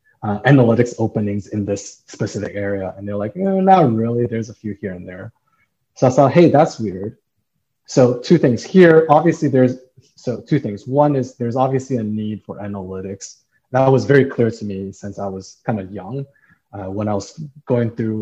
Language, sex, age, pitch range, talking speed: English, male, 20-39, 100-130 Hz, 200 wpm